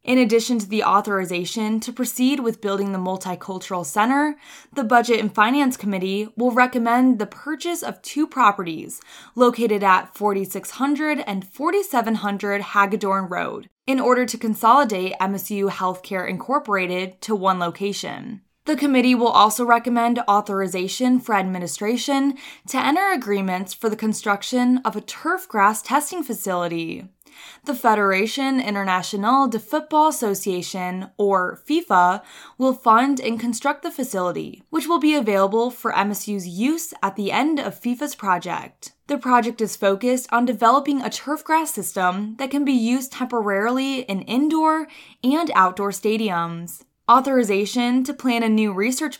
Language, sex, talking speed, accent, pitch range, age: English, female, 140 wpm, American, 195-260 Hz, 20-39